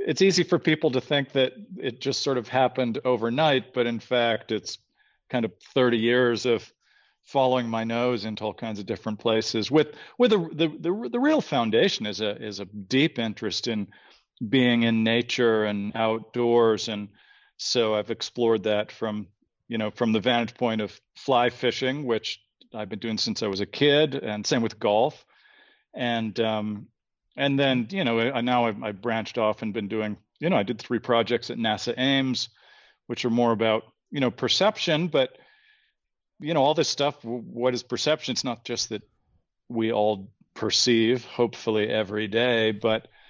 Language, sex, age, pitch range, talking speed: English, male, 40-59, 110-125 Hz, 180 wpm